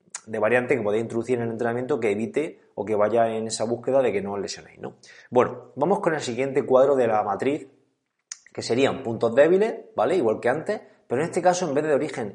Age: 20-39